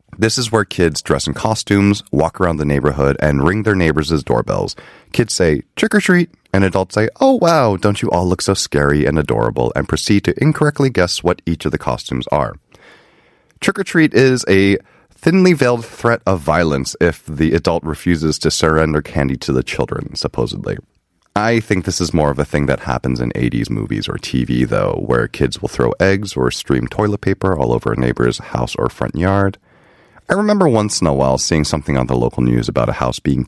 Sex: male